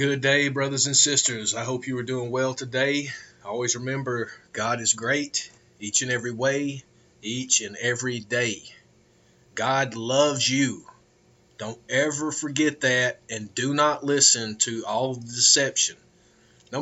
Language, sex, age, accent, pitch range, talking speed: English, male, 30-49, American, 115-140 Hz, 145 wpm